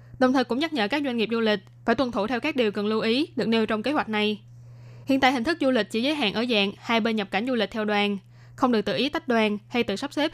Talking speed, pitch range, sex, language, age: 315 wpm, 205-255 Hz, female, Vietnamese, 20-39